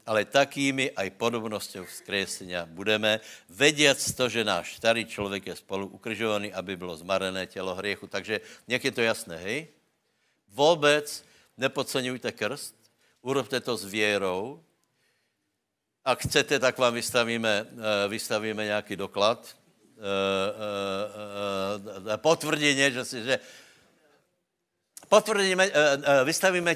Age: 60-79